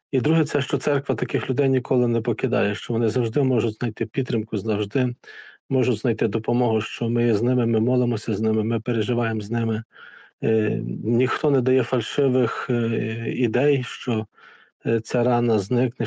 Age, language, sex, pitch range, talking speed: 40-59, Ukrainian, male, 115-125 Hz, 165 wpm